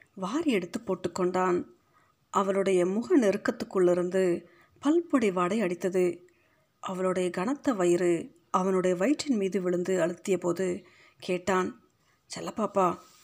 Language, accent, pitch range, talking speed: Tamil, native, 180-210 Hz, 90 wpm